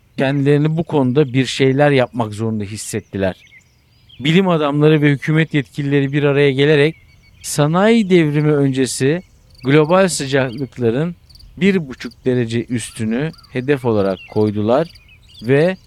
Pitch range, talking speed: 115-155 Hz, 110 wpm